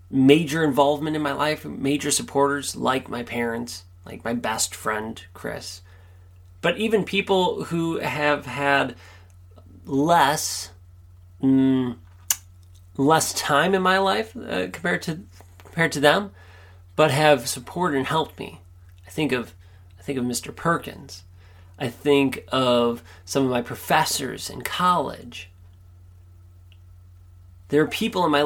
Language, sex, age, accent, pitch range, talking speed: English, male, 30-49, American, 90-140 Hz, 130 wpm